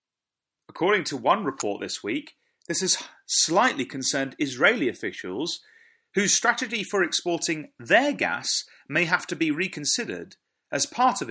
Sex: male